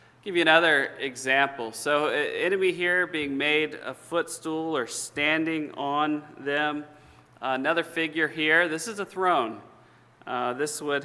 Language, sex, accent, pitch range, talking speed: English, male, American, 135-175 Hz, 140 wpm